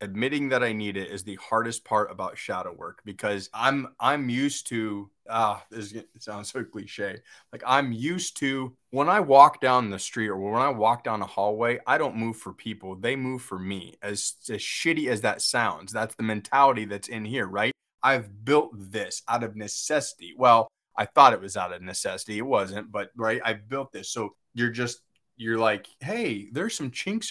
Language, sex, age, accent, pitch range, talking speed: English, male, 20-39, American, 100-130 Hz, 210 wpm